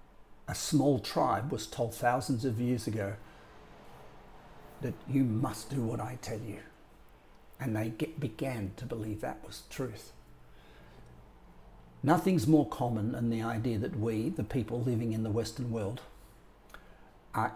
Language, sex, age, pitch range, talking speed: English, male, 50-69, 115-135 Hz, 140 wpm